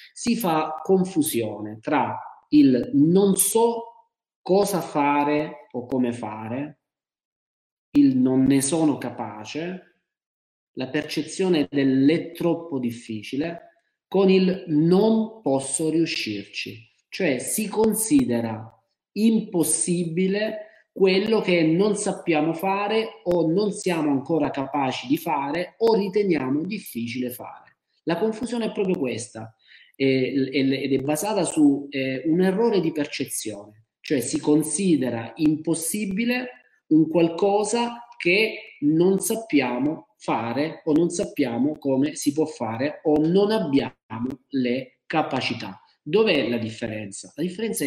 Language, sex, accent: Italian, male, native